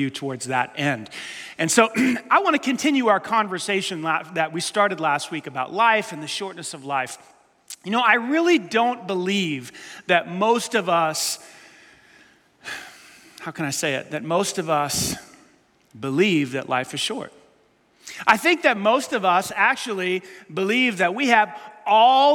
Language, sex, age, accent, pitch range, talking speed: English, male, 30-49, American, 180-235 Hz, 160 wpm